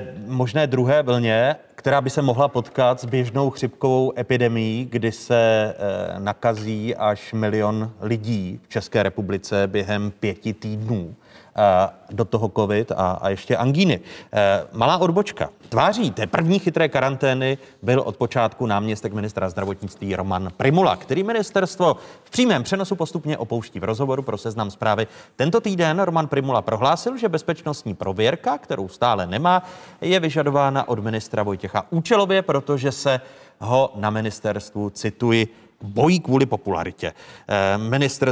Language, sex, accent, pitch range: Czech, male, native, 105-150 Hz